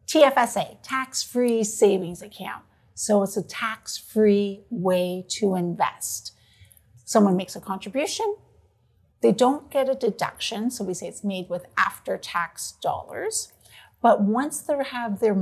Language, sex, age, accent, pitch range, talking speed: English, female, 50-69, American, 200-255 Hz, 130 wpm